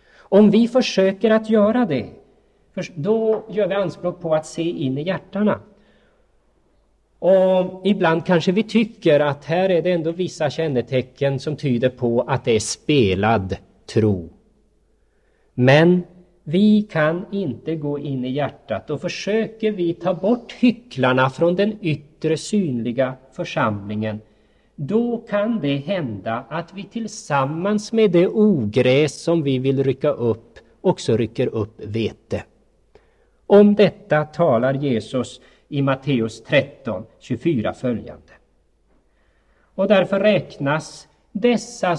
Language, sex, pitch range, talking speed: Swedish, male, 135-200 Hz, 125 wpm